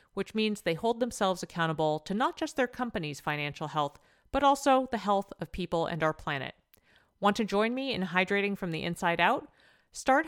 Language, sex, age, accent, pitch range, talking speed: English, female, 40-59, American, 165-245 Hz, 195 wpm